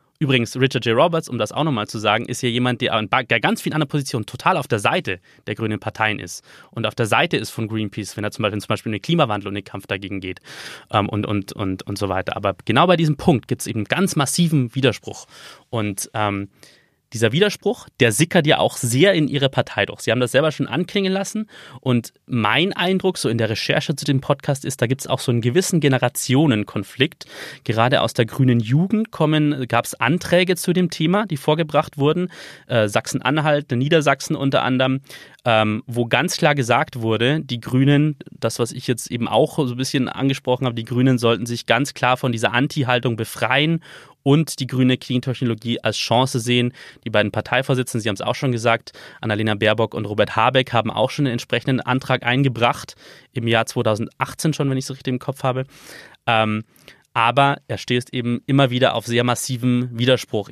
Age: 30-49